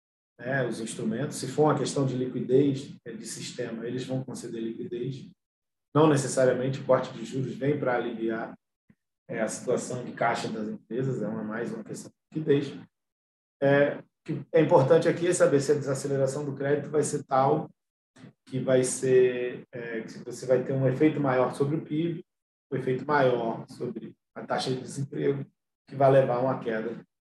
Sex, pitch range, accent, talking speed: male, 120-140 Hz, Brazilian, 165 wpm